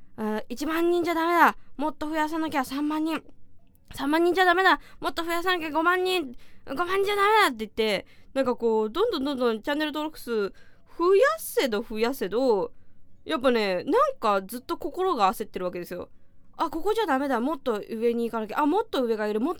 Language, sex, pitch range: Japanese, female, 230-370 Hz